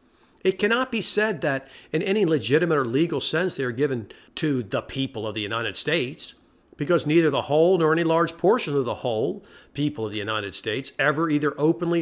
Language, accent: English, American